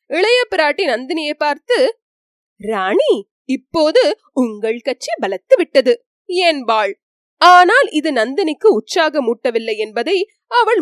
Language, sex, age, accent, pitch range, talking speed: Tamil, female, 20-39, native, 285-430 Hz, 70 wpm